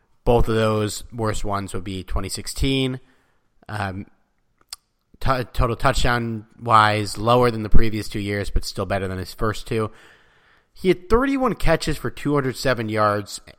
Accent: American